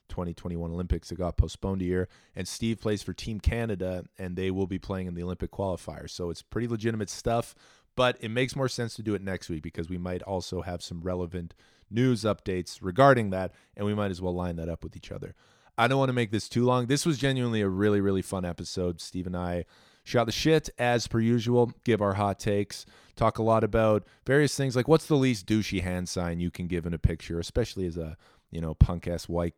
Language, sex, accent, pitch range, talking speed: English, male, American, 90-115 Hz, 230 wpm